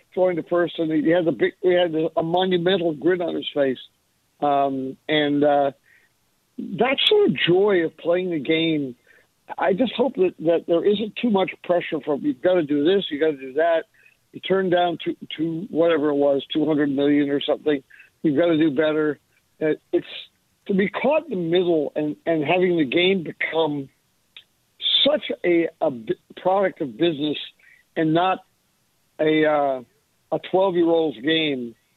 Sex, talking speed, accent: male, 170 wpm, American